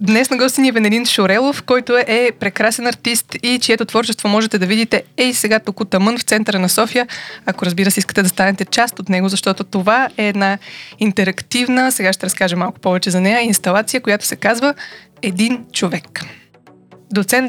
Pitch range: 190-235 Hz